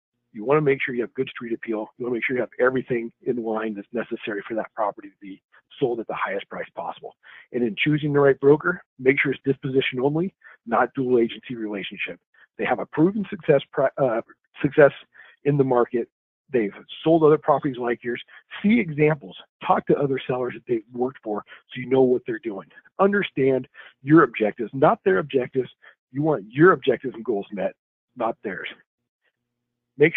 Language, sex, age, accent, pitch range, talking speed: English, male, 40-59, American, 120-150 Hz, 185 wpm